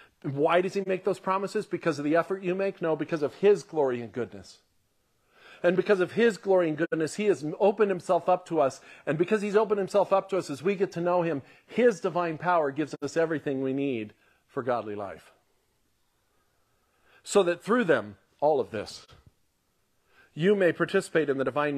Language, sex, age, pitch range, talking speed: English, male, 50-69, 130-175 Hz, 195 wpm